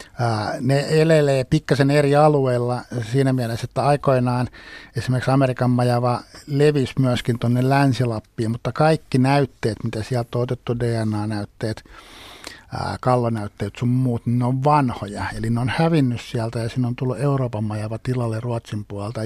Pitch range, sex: 110-130 Hz, male